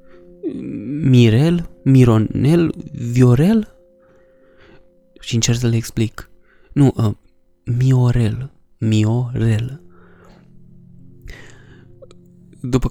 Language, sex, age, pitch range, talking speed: Romanian, male, 20-39, 110-135 Hz, 60 wpm